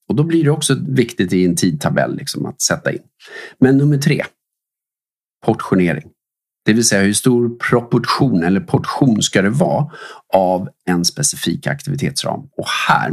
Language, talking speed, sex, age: Swedish, 155 wpm, male, 40-59